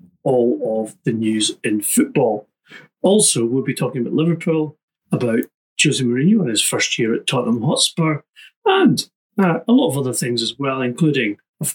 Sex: male